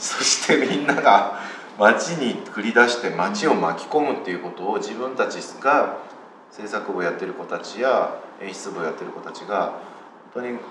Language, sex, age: Japanese, male, 30-49